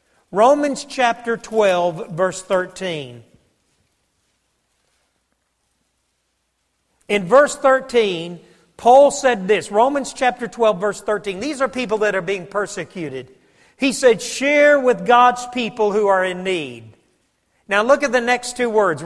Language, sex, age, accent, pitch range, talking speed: English, male, 40-59, American, 200-255 Hz, 125 wpm